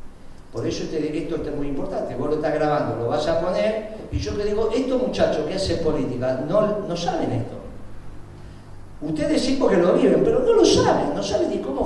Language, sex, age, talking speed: Spanish, male, 50-69, 215 wpm